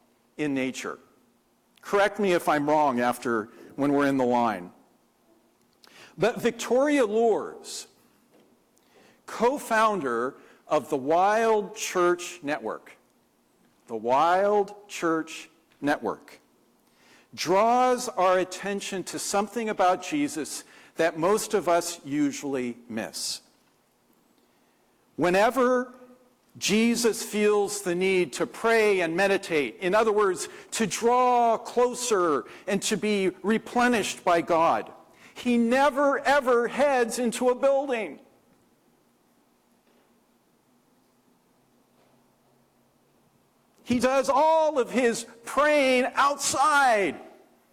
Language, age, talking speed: English, 50-69, 95 wpm